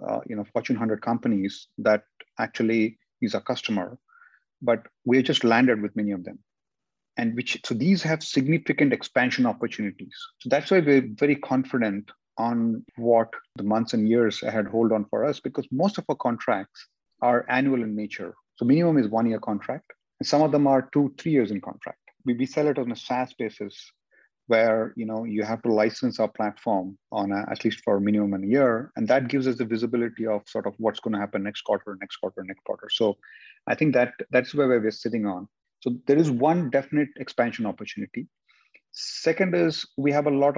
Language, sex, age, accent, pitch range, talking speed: English, male, 30-49, Indian, 115-140 Hz, 200 wpm